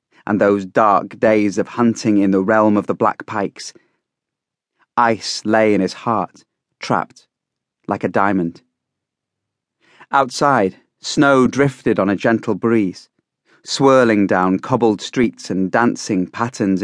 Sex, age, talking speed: male, 30-49, 130 wpm